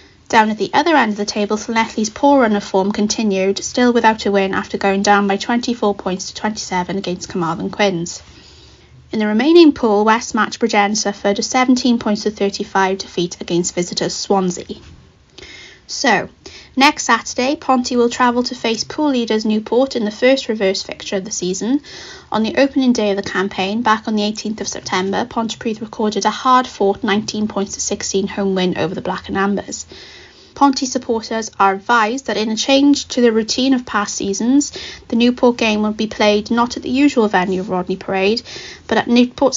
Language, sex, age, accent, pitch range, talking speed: English, female, 30-49, British, 200-240 Hz, 190 wpm